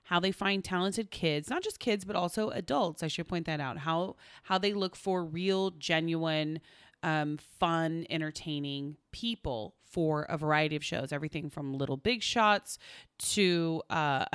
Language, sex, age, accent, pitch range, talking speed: English, female, 30-49, American, 155-230 Hz, 165 wpm